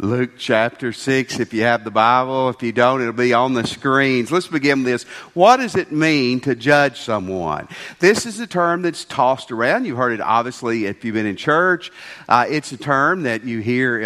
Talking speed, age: 215 wpm, 50-69